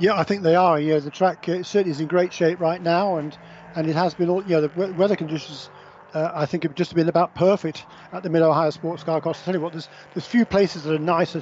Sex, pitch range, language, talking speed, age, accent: male, 160-190 Hz, English, 285 wpm, 50-69, British